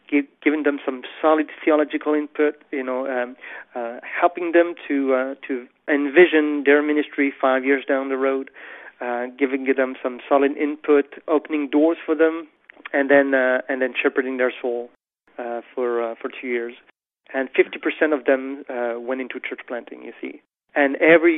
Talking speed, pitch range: 170 wpm, 130-155 Hz